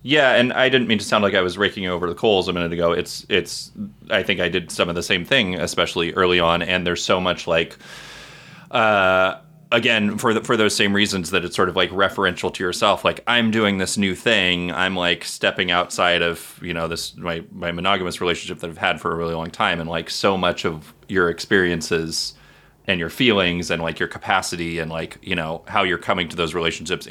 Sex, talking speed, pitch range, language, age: male, 225 wpm, 80-95 Hz, English, 30-49